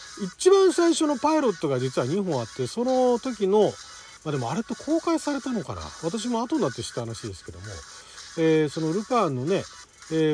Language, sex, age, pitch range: Japanese, male, 40-59, 135-215 Hz